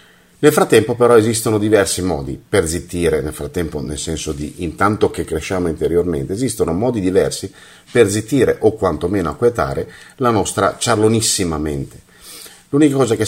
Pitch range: 80-120 Hz